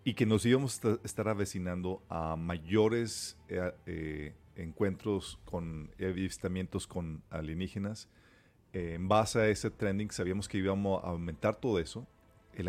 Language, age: Spanish, 40-59